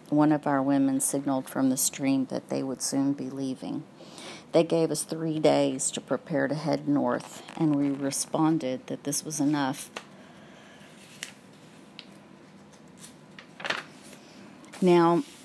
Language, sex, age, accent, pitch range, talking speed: English, female, 50-69, American, 140-185 Hz, 125 wpm